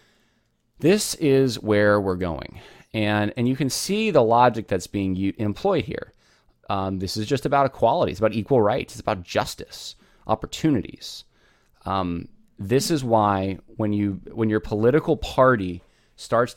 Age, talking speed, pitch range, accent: 20-39, 150 wpm, 95-120 Hz, American